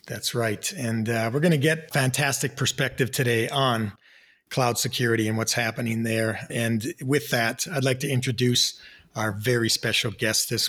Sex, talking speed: male, 170 wpm